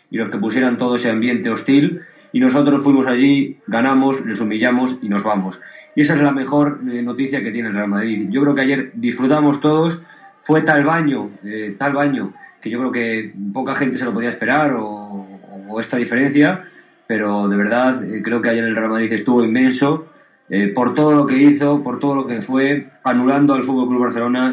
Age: 30-49